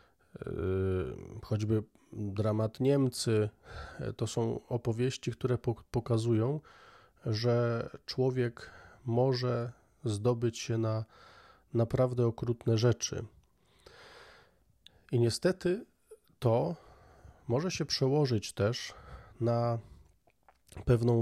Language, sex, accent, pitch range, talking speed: Polish, male, native, 110-130 Hz, 75 wpm